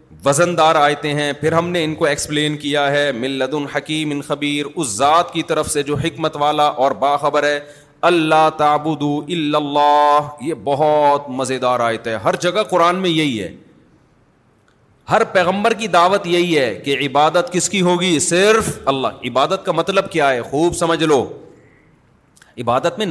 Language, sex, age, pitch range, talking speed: Urdu, male, 40-59, 145-180 Hz, 165 wpm